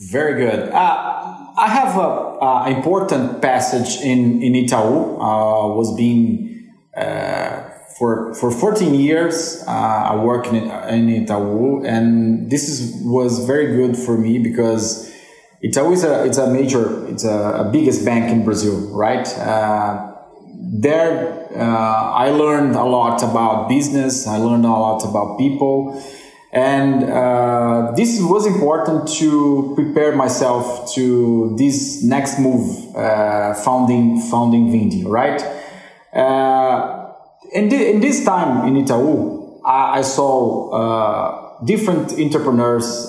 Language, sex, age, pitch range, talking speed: English, male, 20-39, 115-140 Hz, 130 wpm